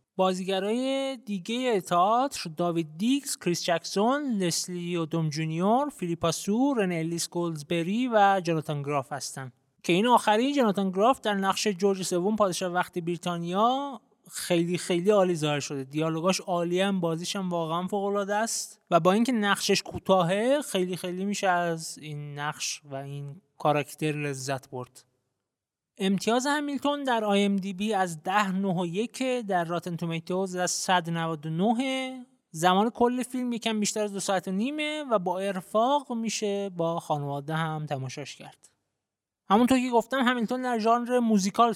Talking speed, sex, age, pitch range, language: 145 wpm, male, 30-49, 165-225 Hz, Persian